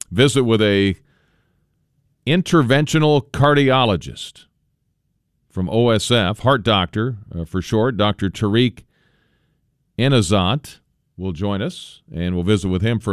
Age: 40-59